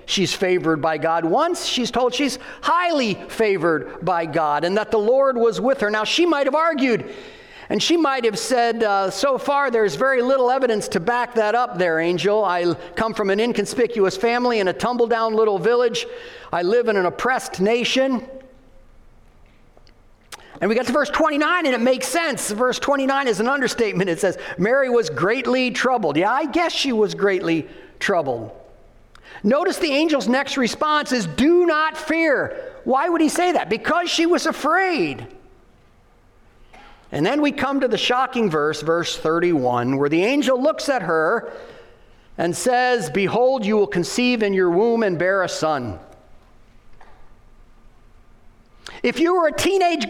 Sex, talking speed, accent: male, 165 wpm, American